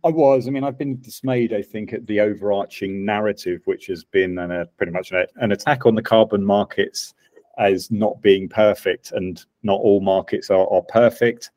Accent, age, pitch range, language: British, 40-59, 95-115 Hz, English